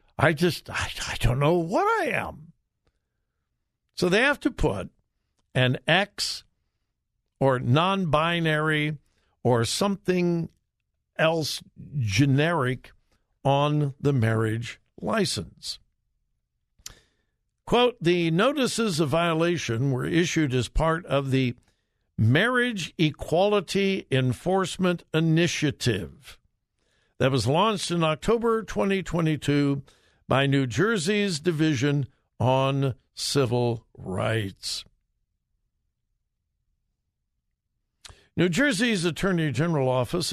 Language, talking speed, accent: English, 90 wpm, American